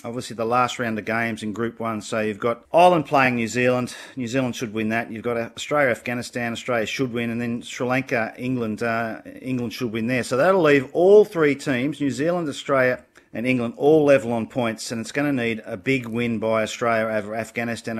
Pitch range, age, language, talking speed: 115-135 Hz, 40-59, English, 205 wpm